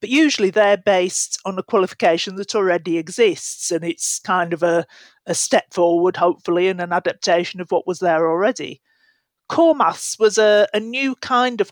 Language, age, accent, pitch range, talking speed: English, 40-59, British, 175-230 Hz, 180 wpm